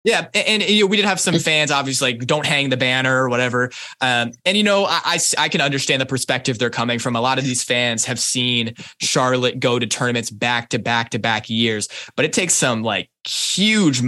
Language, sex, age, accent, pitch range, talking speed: English, male, 20-39, American, 120-140 Hz, 235 wpm